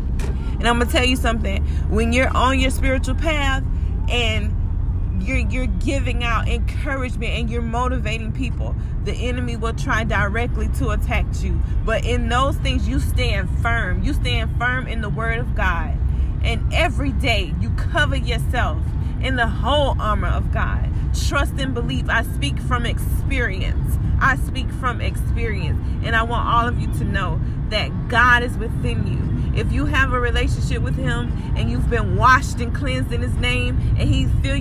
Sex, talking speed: female, 175 wpm